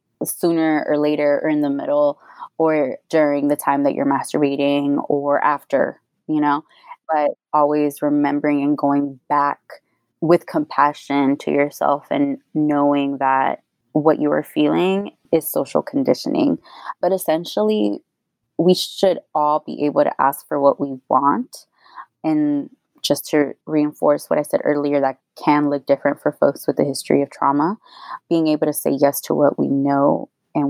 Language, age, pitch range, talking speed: English, 20-39, 140-170 Hz, 155 wpm